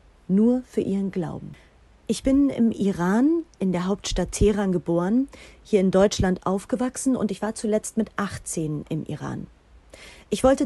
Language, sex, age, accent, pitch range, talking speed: German, female, 30-49, German, 185-240 Hz, 150 wpm